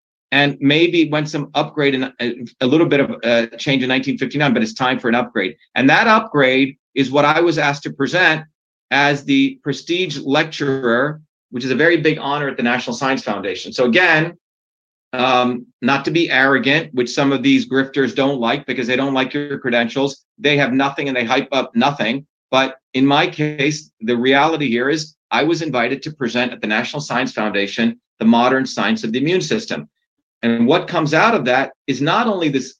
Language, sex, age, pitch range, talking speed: English, male, 40-59, 130-165 Hz, 200 wpm